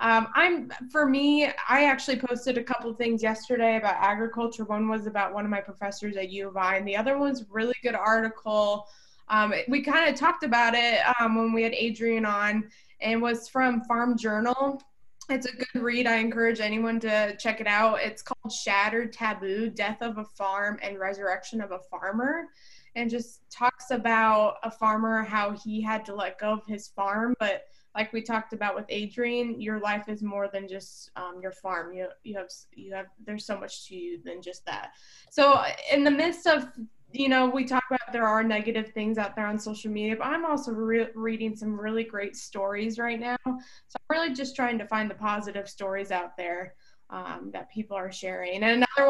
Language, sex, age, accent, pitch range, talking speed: English, female, 20-39, American, 210-255 Hz, 205 wpm